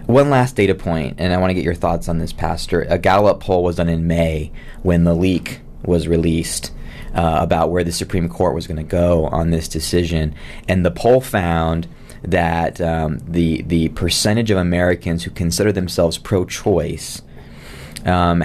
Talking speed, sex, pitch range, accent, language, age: 180 wpm, male, 85-95 Hz, American, English, 20-39